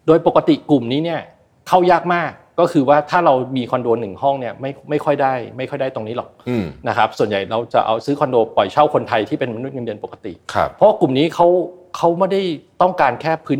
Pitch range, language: 120-165 Hz, Thai